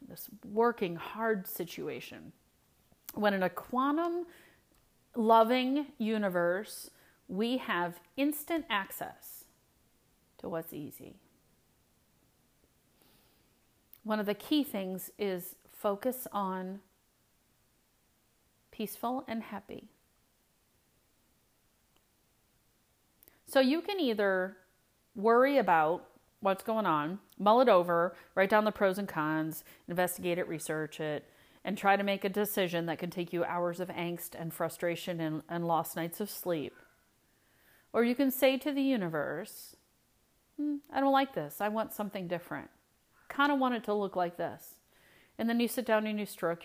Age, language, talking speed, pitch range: 30-49, English, 130 wpm, 175-230 Hz